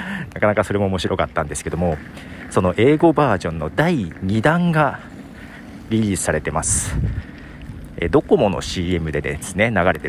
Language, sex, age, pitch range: Japanese, male, 50-69, 80-120 Hz